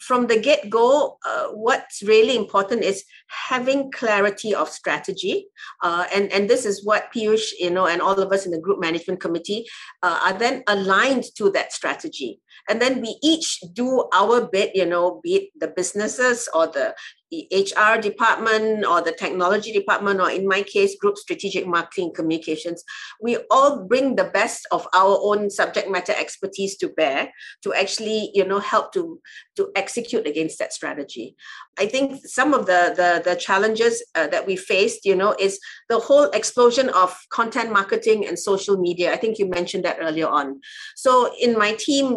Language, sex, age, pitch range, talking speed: English, female, 50-69, 190-250 Hz, 180 wpm